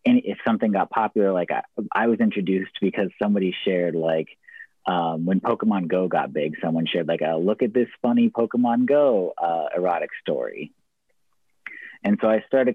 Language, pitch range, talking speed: English, 85-115 Hz, 175 wpm